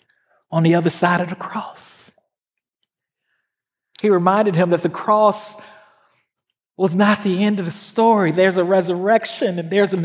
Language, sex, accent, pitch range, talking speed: English, male, American, 210-285 Hz, 155 wpm